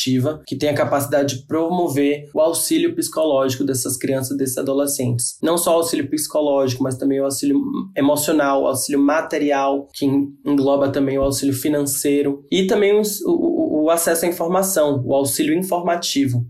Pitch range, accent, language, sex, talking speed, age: 135-170 Hz, Brazilian, Portuguese, male, 155 wpm, 20-39